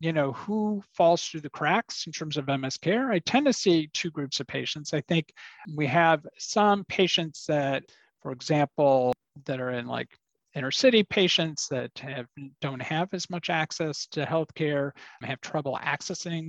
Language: English